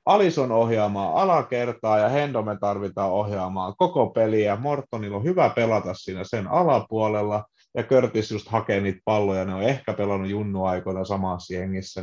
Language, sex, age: Finnish, male, 30-49